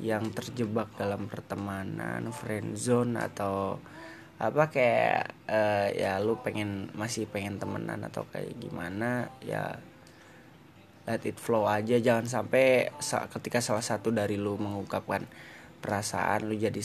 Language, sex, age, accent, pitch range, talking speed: Indonesian, male, 20-39, native, 110-150 Hz, 130 wpm